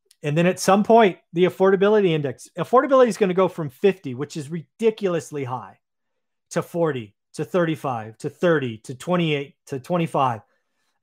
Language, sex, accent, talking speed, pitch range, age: English, male, American, 150 wpm, 145-185 Hz, 30-49